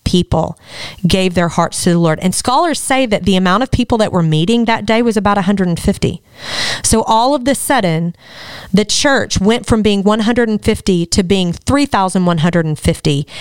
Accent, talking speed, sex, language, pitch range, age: American, 165 wpm, female, English, 180-225 Hz, 40-59